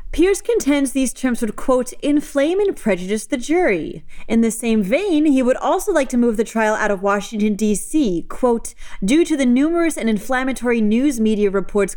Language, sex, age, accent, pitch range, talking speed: English, female, 30-49, American, 195-260 Hz, 185 wpm